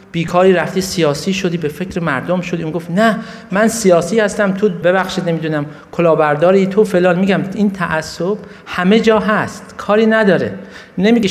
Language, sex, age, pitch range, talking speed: Persian, male, 50-69, 150-205 Hz, 155 wpm